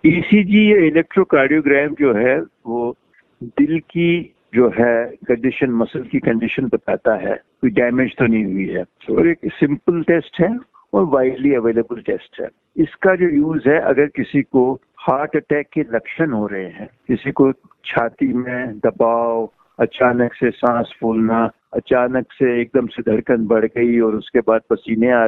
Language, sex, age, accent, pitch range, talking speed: Hindi, male, 60-79, native, 120-160 Hz, 155 wpm